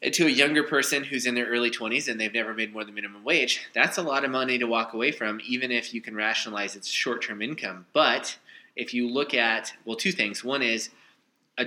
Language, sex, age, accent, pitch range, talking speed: English, male, 20-39, American, 105-125 Hz, 230 wpm